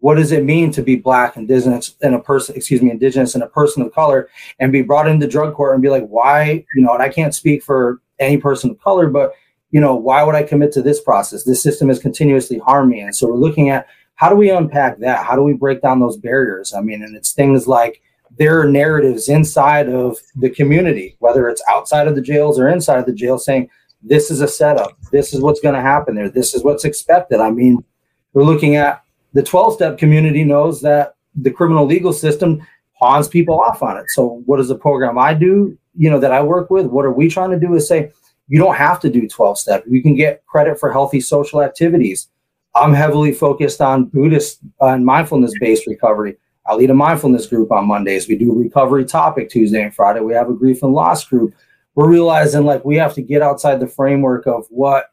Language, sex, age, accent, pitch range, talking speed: English, male, 30-49, American, 130-150 Hz, 230 wpm